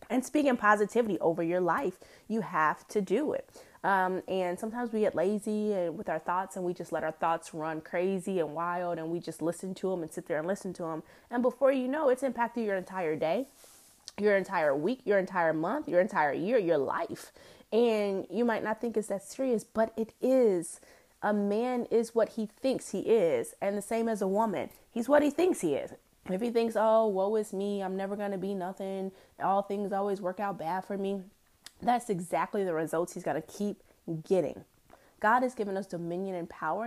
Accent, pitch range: American, 175-220 Hz